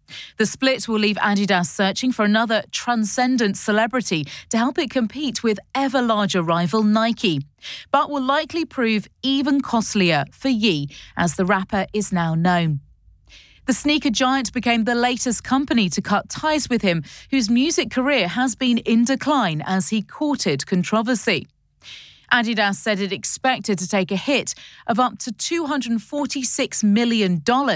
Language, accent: English, British